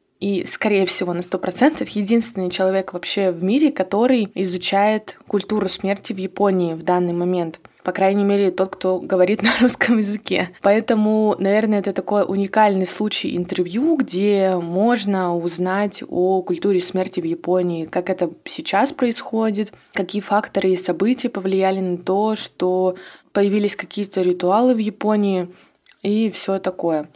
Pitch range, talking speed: 180-215 Hz, 140 wpm